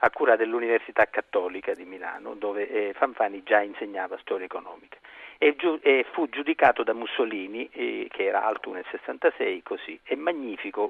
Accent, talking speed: native, 160 wpm